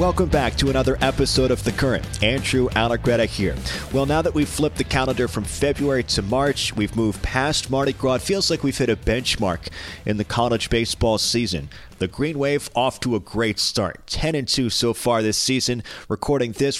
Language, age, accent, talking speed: English, 30-49, American, 195 wpm